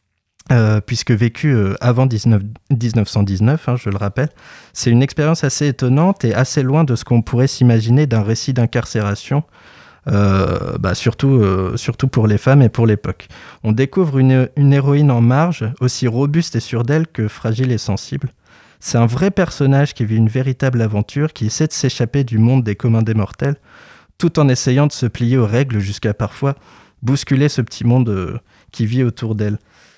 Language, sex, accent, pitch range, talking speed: French, male, French, 110-135 Hz, 180 wpm